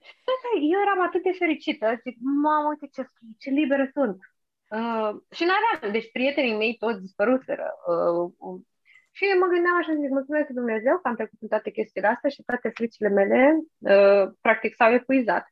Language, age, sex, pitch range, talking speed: Romanian, 20-39, female, 205-295 Hz, 175 wpm